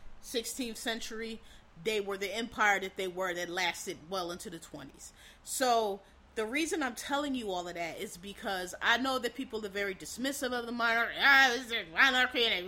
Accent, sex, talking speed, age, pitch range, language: American, female, 175 wpm, 30-49, 215-275 Hz, English